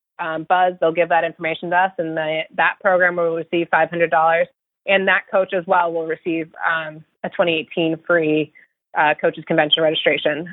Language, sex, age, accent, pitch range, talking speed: English, female, 20-39, American, 170-200 Hz, 170 wpm